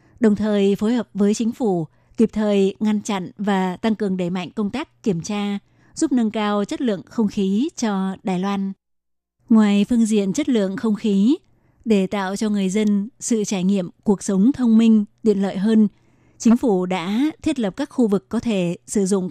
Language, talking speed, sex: Vietnamese, 200 wpm, female